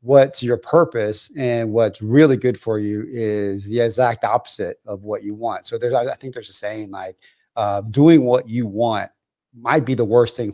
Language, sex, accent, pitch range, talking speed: English, male, American, 115-150 Hz, 200 wpm